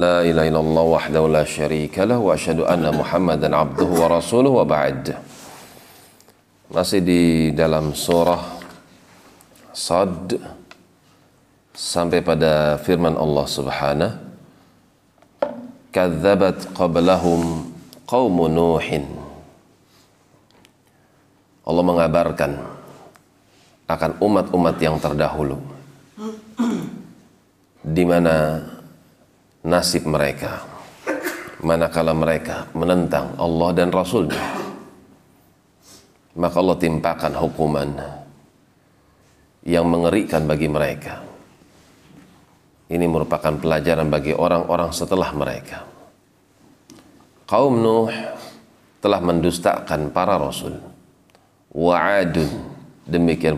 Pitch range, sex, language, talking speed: 80-90 Hz, male, Indonesian, 55 wpm